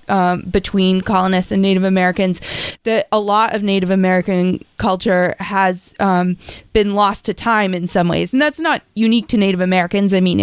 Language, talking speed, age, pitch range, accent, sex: English, 180 wpm, 20-39, 190-225 Hz, American, female